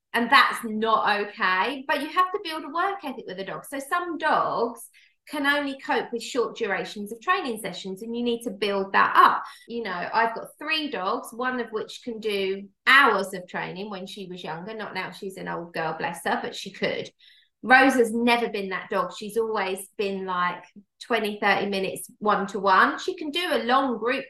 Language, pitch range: English, 195-255 Hz